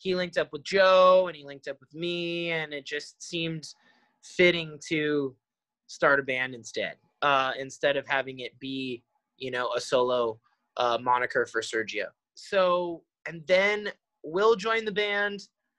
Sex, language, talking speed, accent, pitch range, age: male, English, 160 wpm, American, 135-170 Hz, 20-39